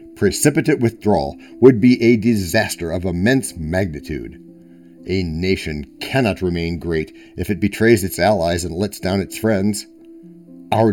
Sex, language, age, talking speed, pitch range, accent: male, English, 60-79, 135 wpm, 85-120 Hz, American